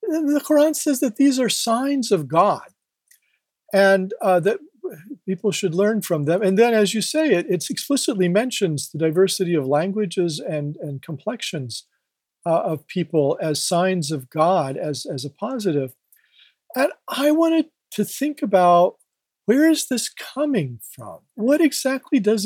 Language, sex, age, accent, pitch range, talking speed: English, male, 40-59, American, 140-210 Hz, 155 wpm